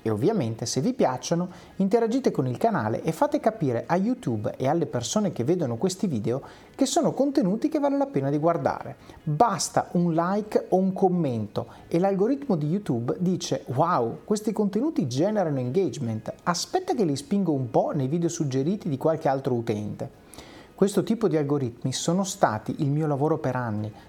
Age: 30-49